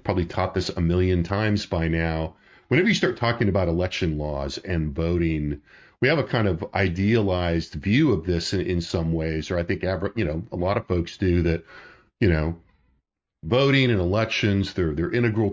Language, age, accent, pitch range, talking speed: English, 40-59, American, 85-115 Hz, 190 wpm